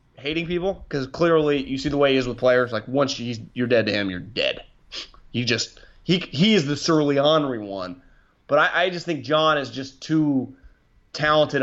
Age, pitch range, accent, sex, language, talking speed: 30-49, 115-145 Hz, American, male, English, 210 wpm